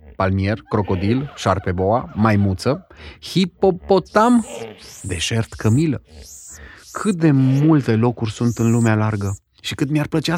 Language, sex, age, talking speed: Romanian, male, 30-49, 110 wpm